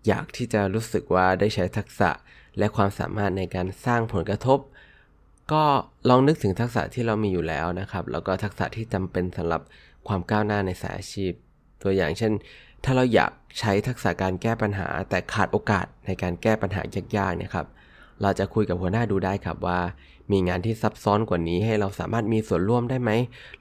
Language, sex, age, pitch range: Thai, male, 20-39, 90-115 Hz